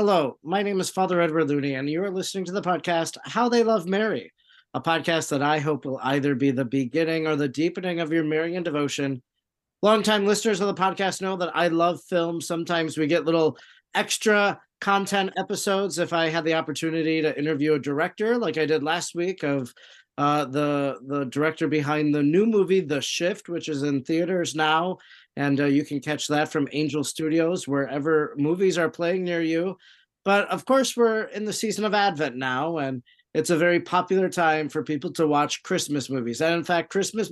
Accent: American